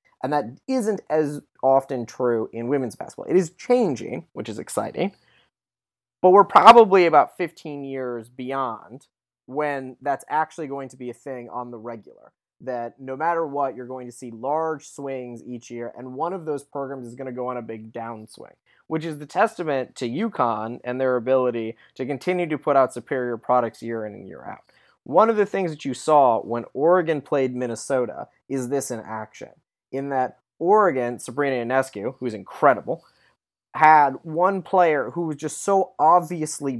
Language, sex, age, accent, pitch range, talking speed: English, male, 20-39, American, 125-160 Hz, 180 wpm